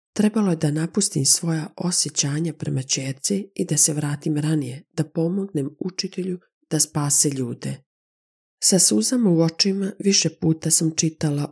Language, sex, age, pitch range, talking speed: Croatian, female, 40-59, 150-180 Hz, 135 wpm